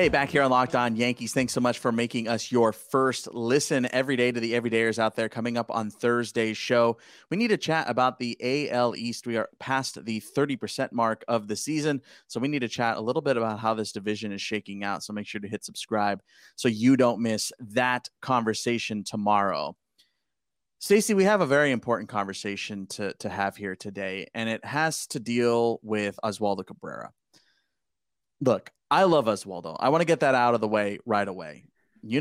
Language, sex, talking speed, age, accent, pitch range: English, male, 205 wpm, 30-49, American, 105-130 Hz